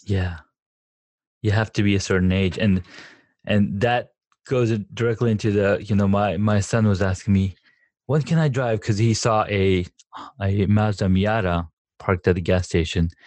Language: English